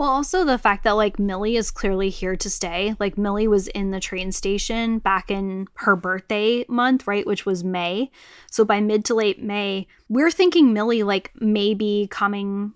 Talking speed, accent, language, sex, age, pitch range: 190 wpm, American, English, female, 10-29, 195-220 Hz